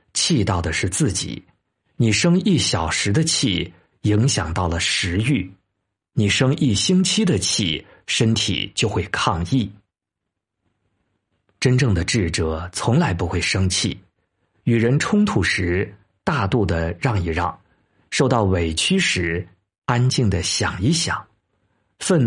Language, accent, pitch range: Chinese, native, 95-130 Hz